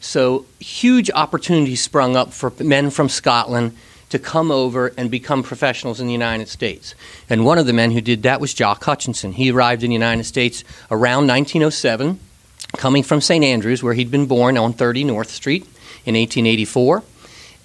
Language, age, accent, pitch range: English, 40-59, American, 120-140 Hz